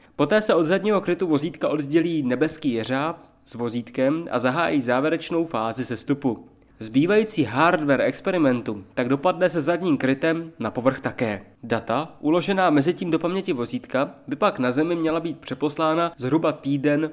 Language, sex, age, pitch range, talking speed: Czech, male, 20-39, 130-170 Hz, 150 wpm